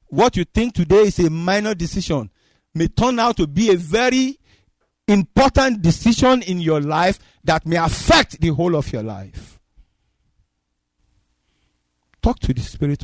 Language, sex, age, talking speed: English, male, 50-69, 145 wpm